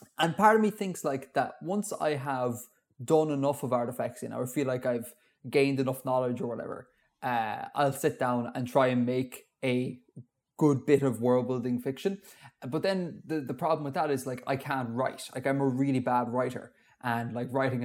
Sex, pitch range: male, 125-150 Hz